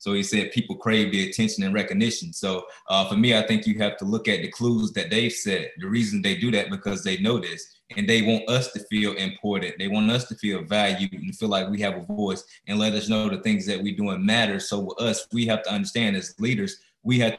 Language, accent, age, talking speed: English, American, 20-39, 260 wpm